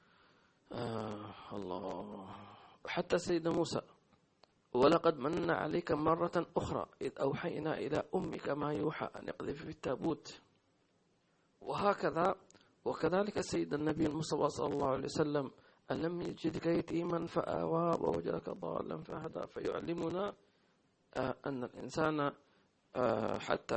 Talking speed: 105 wpm